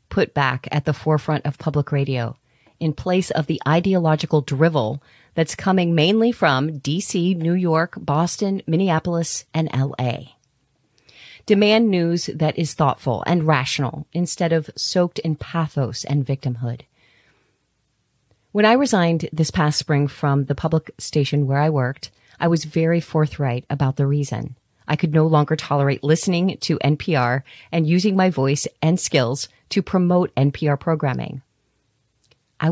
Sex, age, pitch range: female, 40-59, 135-175 Hz